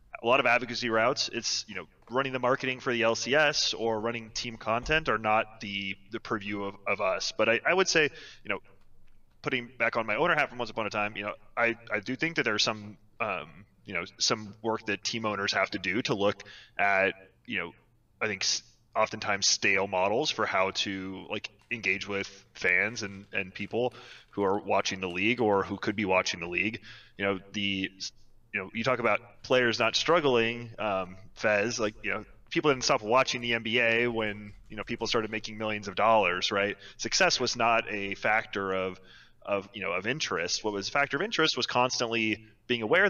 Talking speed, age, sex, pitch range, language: 205 wpm, 20-39, male, 100-120 Hz, English